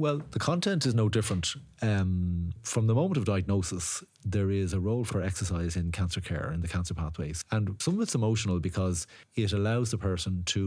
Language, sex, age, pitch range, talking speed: English, male, 30-49, 90-110 Hz, 200 wpm